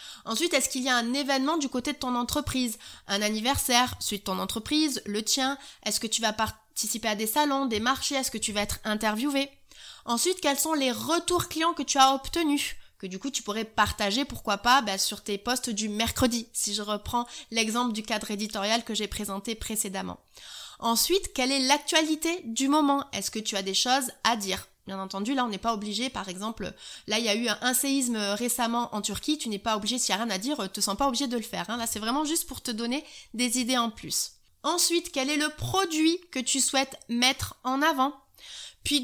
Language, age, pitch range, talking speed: French, 20-39, 220-280 Hz, 225 wpm